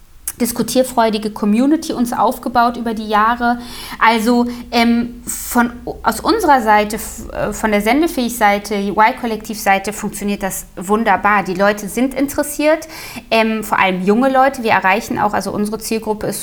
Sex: female